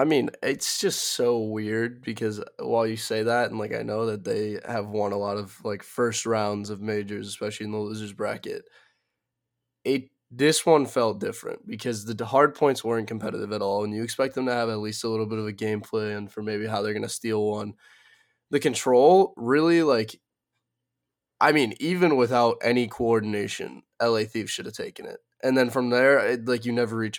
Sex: male